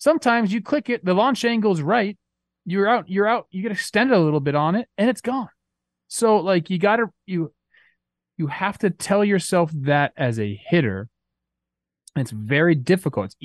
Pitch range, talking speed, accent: 125-175 Hz, 185 wpm, American